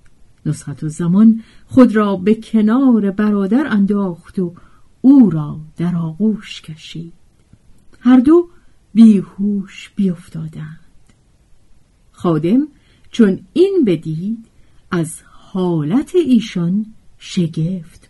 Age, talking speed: 50-69, 90 wpm